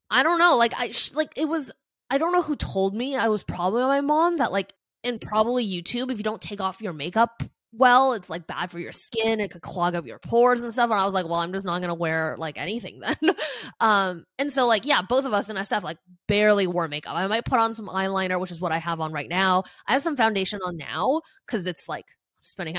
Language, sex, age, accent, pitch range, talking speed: English, female, 20-39, American, 175-235 Hz, 265 wpm